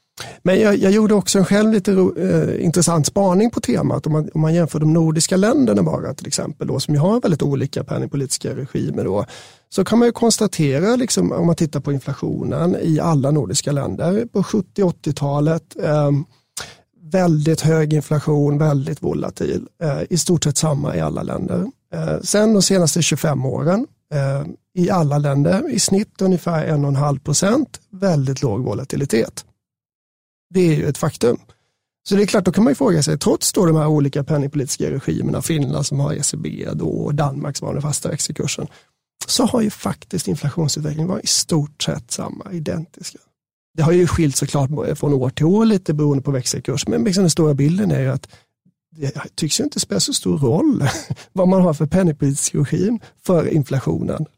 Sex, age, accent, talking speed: male, 30-49, native, 180 wpm